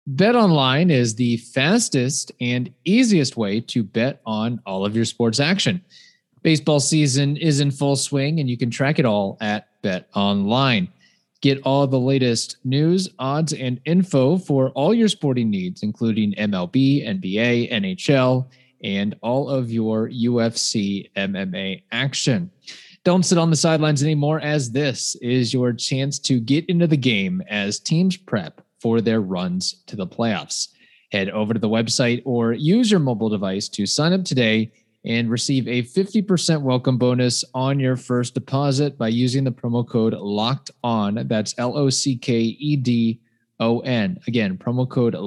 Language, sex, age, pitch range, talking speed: English, male, 30-49, 115-150 Hz, 160 wpm